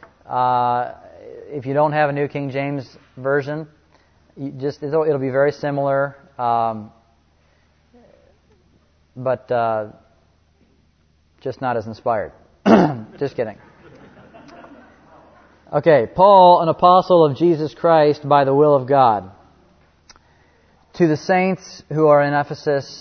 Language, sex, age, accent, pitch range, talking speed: English, male, 30-49, American, 115-145 Hz, 115 wpm